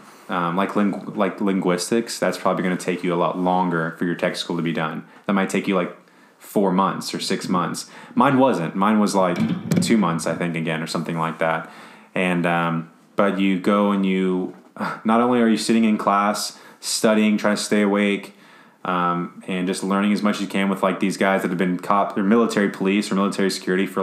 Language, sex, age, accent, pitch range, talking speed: English, male, 20-39, American, 90-110 Hz, 220 wpm